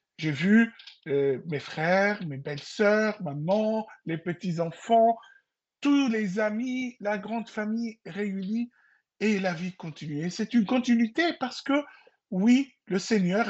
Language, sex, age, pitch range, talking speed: French, male, 60-79, 160-220 Hz, 135 wpm